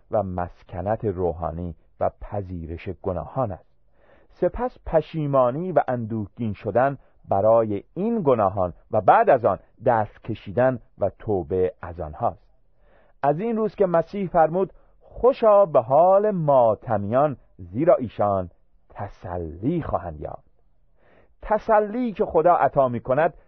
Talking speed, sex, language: 120 wpm, male, Persian